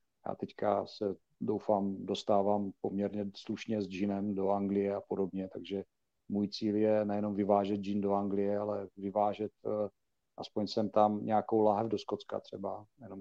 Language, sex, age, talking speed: Czech, male, 40-59, 155 wpm